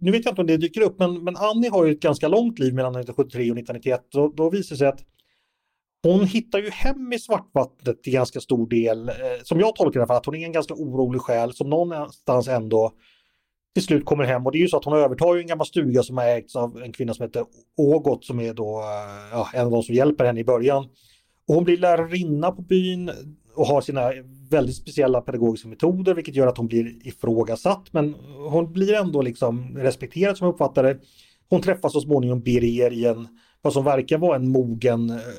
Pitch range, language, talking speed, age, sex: 120-165 Hz, Swedish, 220 wpm, 30-49, male